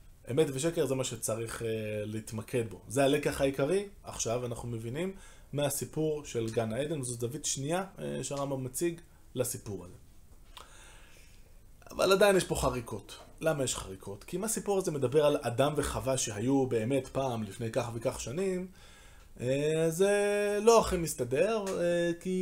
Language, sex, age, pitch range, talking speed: Hebrew, male, 20-39, 110-160 Hz, 145 wpm